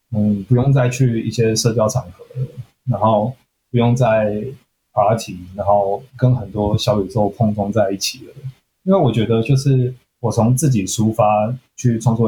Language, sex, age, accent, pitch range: Chinese, male, 20-39, native, 105-130 Hz